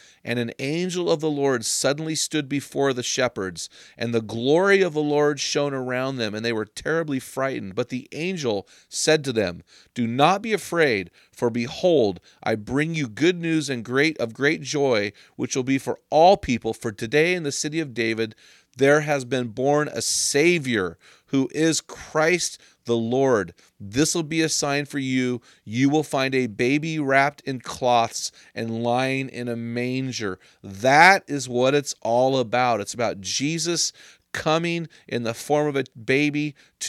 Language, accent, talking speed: English, American, 170 wpm